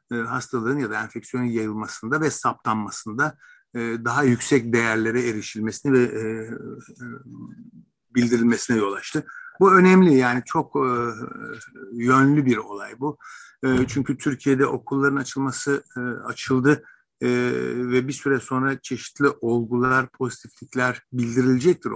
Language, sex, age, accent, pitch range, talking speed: Turkish, male, 60-79, native, 115-135 Hz, 100 wpm